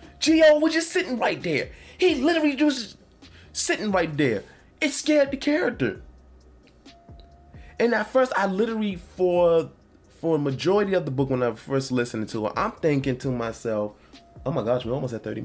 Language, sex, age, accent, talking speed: English, male, 20-39, American, 175 wpm